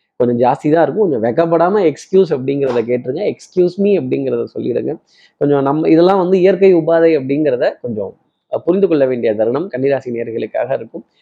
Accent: native